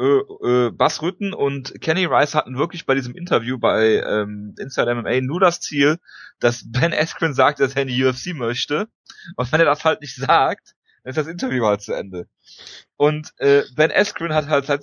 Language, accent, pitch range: German, German, 125-160 Hz